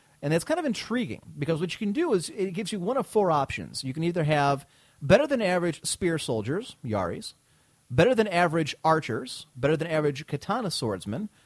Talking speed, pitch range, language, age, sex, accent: 195 wpm, 130-185 Hz, English, 30-49, male, American